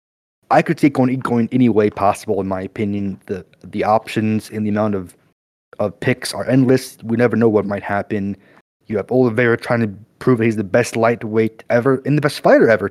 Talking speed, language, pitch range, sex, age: 205 wpm, English, 110-145 Hz, male, 30-49